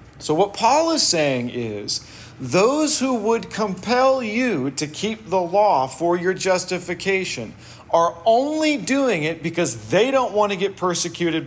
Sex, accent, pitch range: male, American, 125-190 Hz